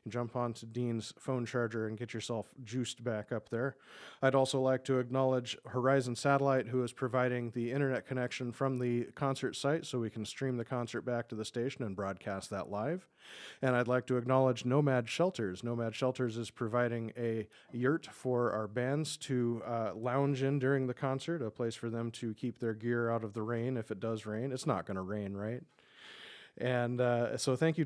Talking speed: 205 wpm